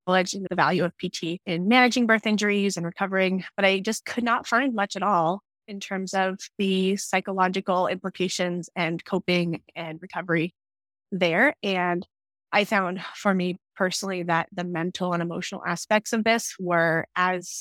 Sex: female